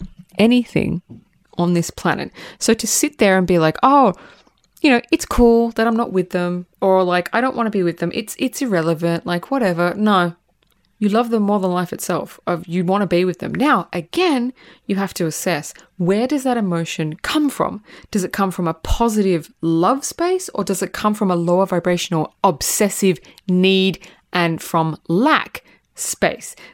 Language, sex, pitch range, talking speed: English, female, 170-215 Hz, 190 wpm